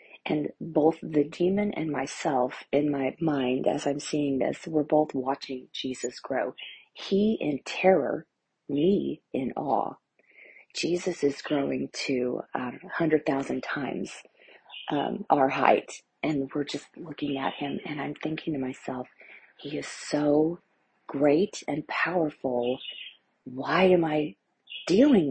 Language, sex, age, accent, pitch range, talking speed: English, female, 40-59, American, 145-190 Hz, 135 wpm